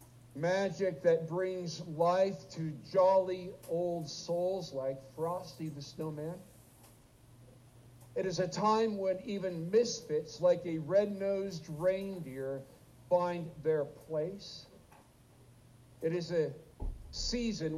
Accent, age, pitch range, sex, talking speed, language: American, 60-79, 125-180 Hz, male, 100 wpm, English